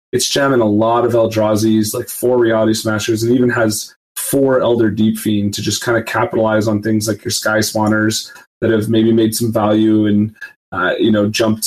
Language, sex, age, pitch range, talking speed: English, male, 20-39, 105-115 Hz, 200 wpm